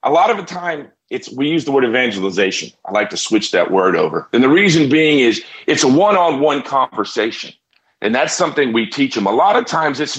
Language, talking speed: English, 225 wpm